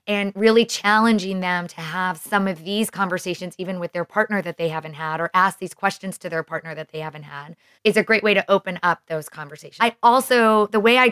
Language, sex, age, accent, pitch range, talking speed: English, female, 20-39, American, 165-200 Hz, 230 wpm